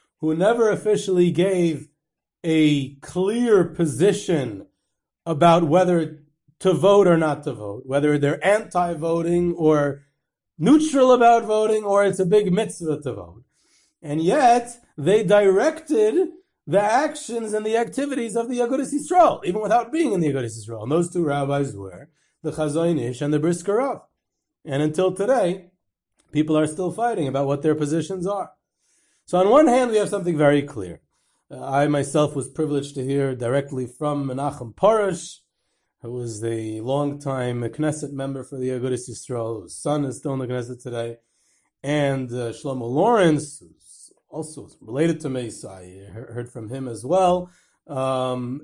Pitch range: 135-185 Hz